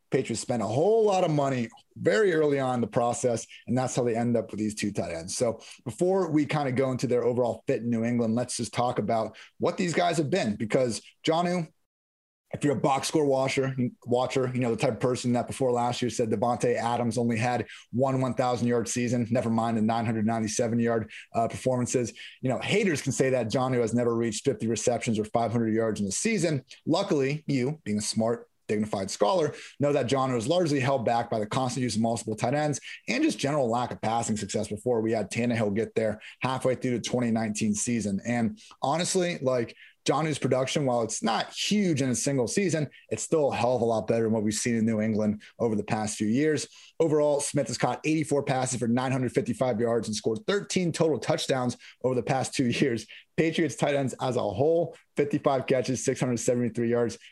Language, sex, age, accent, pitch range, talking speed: English, male, 30-49, American, 115-140 Hz, 205 wpm